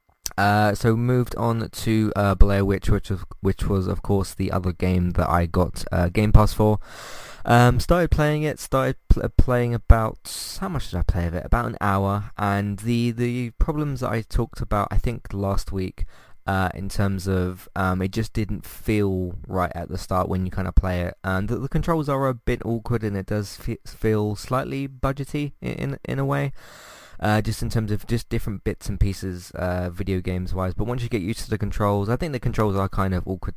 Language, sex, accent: English, male, British